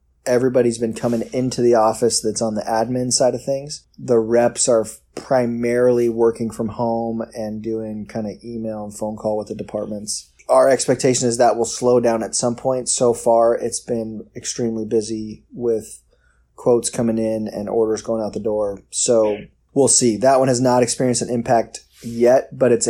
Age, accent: 20-39, American